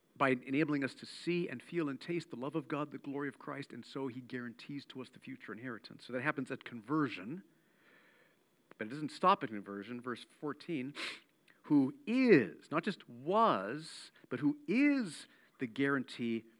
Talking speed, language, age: 175 wpm, English, 50-69